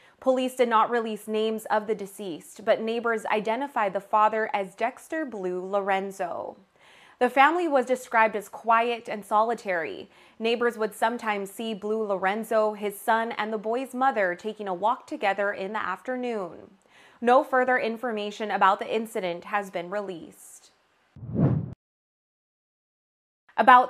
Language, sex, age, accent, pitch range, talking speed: English, female, 20-39, American, 205-240 Hz, 135 wpm